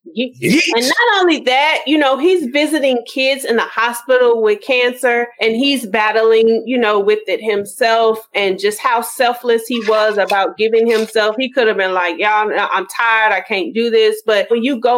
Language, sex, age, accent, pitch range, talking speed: English, female, 30-49, American, 200-260 Hz, 190 wpm